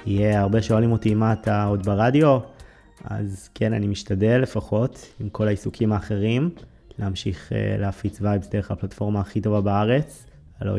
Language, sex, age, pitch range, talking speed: Hebrew, male, 20-39, 100-110 Hz, 155 wpm